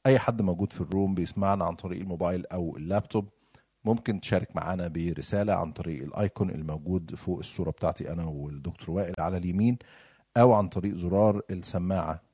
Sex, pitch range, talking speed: male, 90-115 Hz, 155 wpm